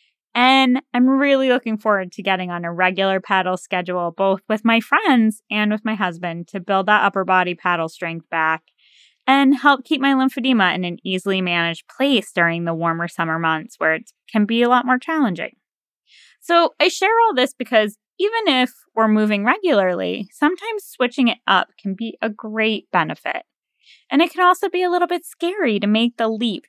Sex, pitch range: female, 195-270 Hz